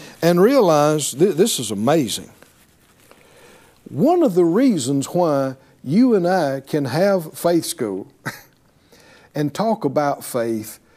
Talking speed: 115 wpm